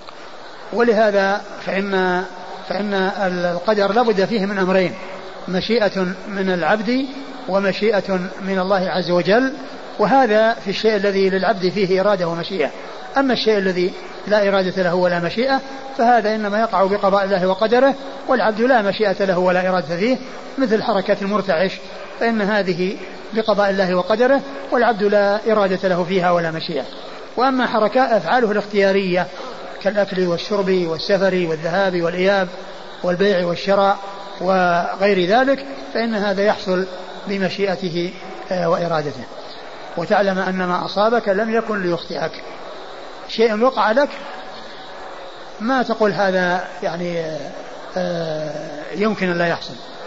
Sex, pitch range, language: male, 185-220 Hz, Arabic